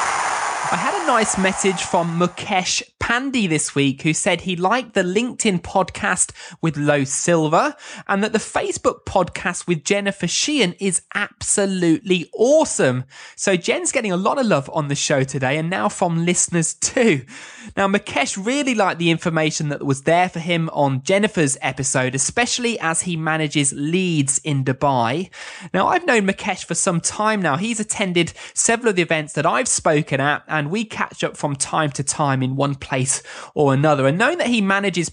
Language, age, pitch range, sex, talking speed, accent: English, 20-39, 150-205 Hz, male, 175 wpm, British